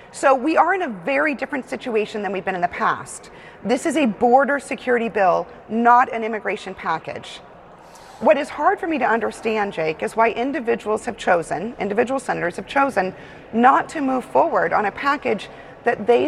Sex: female